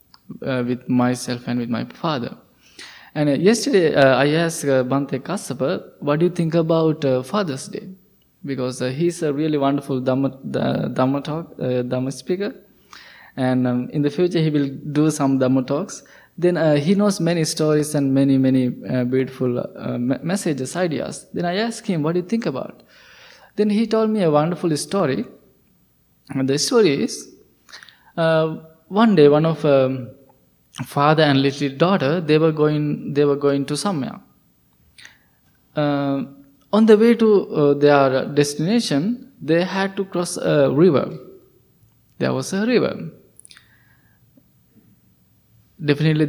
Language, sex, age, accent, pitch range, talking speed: English, male, 20-39, Indian, 135-175 Hz, 155 wpm